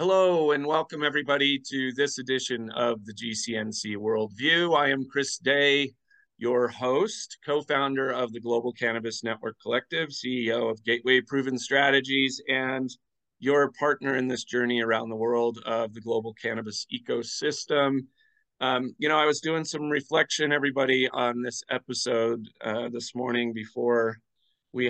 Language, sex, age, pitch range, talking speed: English, male, 30-49, 115-135 Hz, 145 wpm